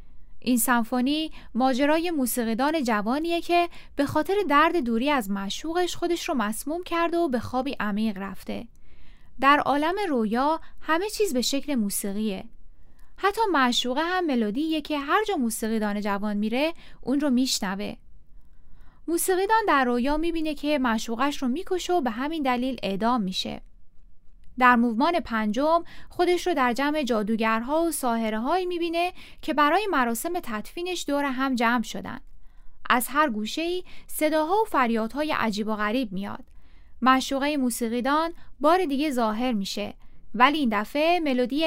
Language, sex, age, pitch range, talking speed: Persian, female, 10-29, 225-320 Hz, 140 wpm